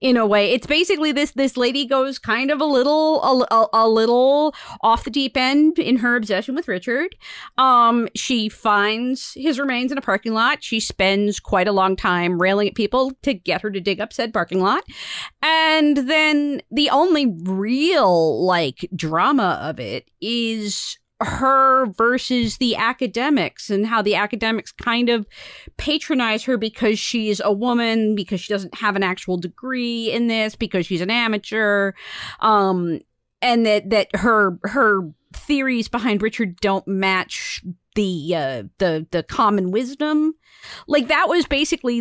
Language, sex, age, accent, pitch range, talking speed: English, female, 30-49, American, 205-280 Hz, 160 wpm